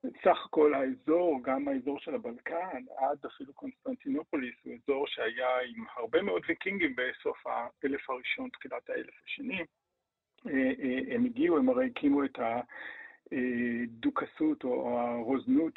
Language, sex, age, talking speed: Hebrew, male, 50-69, 120 wpm